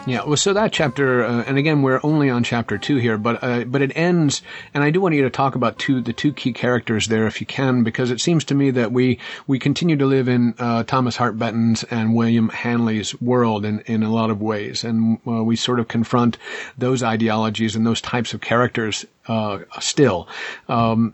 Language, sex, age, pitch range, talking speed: English, male, 50-69, 110-130 Hz, 220 wpm